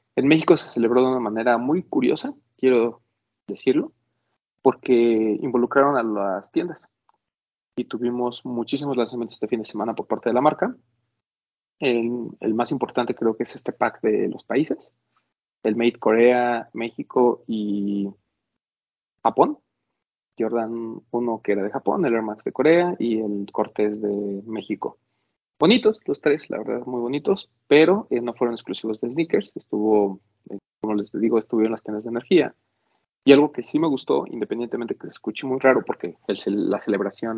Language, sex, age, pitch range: Spanish, male, 30-49, 110-125 Hz